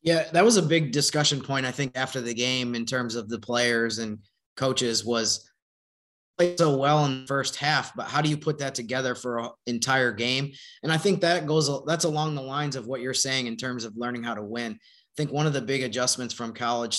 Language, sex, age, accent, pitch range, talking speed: English, male, 20-39, American, 120-140 Hz, 235 wpm